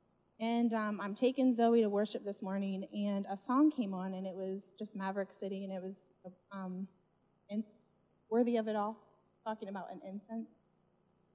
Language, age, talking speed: English, 20-39, 170 wpm